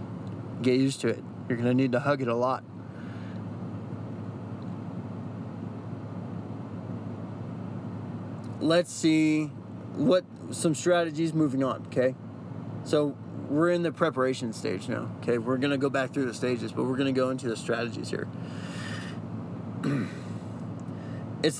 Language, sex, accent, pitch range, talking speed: English, male, American, 125-160 Hz, 130 wpm